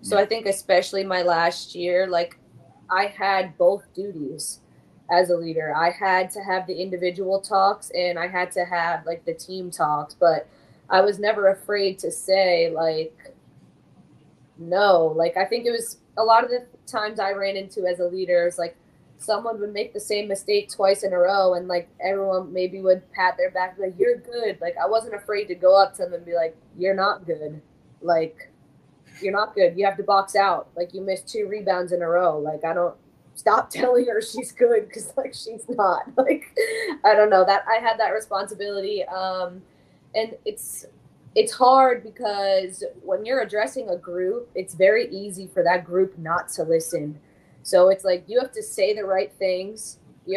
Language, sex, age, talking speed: English, female, 20-39, 195 wpm